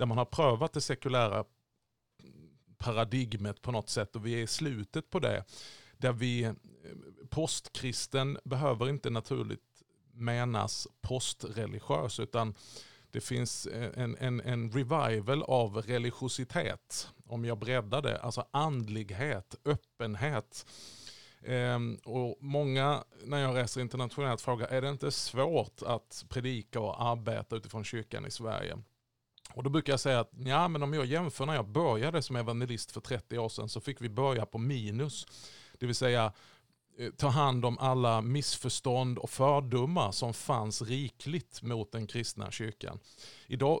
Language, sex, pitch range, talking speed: Swedish, male, 115-135 Hz, 140 wpm